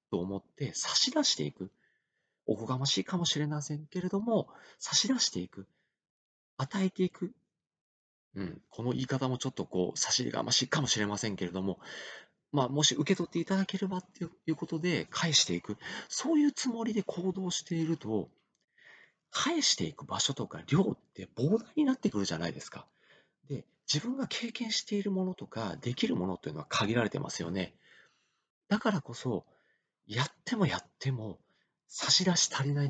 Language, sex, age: Japanese, male, 40-59